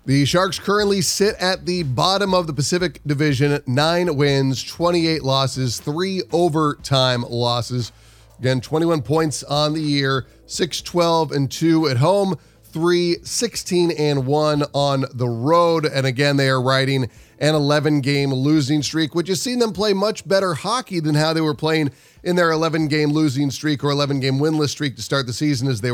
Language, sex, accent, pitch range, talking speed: English, male, American, 135-170 Hz, 155 wpm